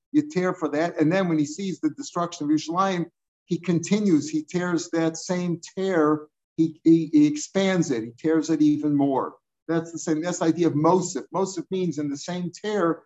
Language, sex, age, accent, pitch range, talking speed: English, male, 50-69, American, 155-180 Hz, 200 wpm